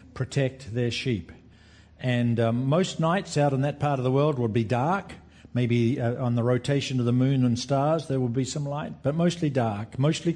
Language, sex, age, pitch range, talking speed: English, male, 50-69, 115-145 Hz, 210 wpm